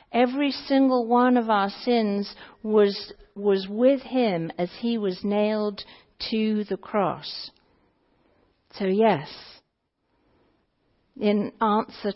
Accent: British